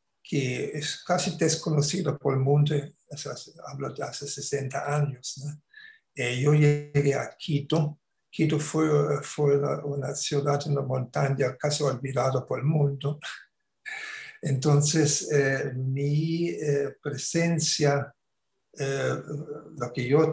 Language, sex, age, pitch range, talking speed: Spanish, male, 60-79, 135-150 Hz, 120 wpm